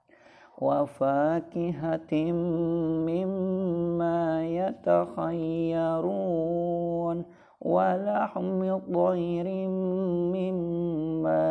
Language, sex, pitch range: Indonesian, male, 160-180 Hz